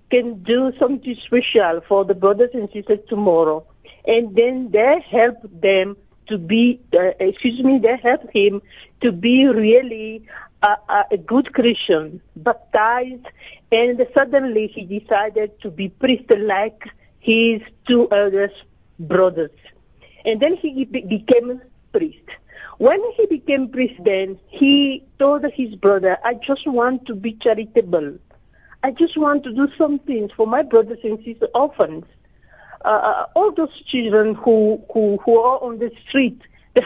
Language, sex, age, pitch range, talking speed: English, female, 50-69, 210-255 Hz, 145 wpm